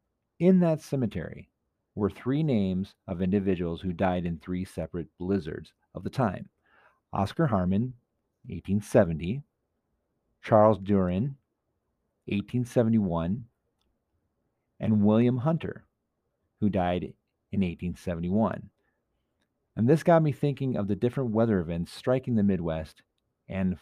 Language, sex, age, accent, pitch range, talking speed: English, male, 40-59, American, 90-120 Hz, 110 wpm